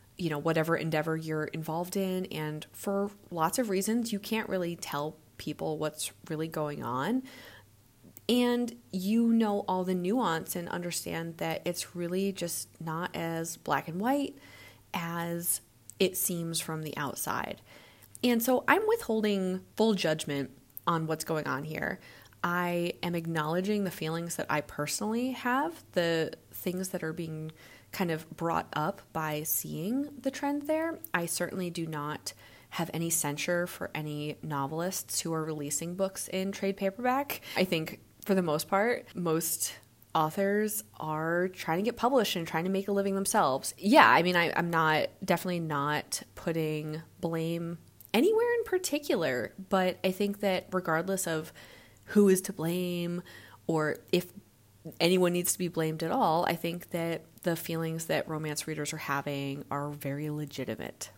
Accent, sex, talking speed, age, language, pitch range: American, female, 155 wpm, 30-49, English, 155-195 Hz